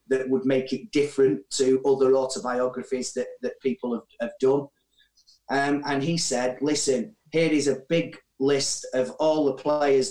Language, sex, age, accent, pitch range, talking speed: Finnish, male, 30-49, British, 130-155 Hz, 165 wpm